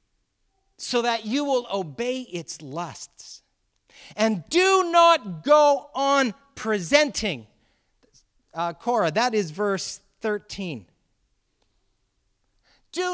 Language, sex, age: English, male, 40-59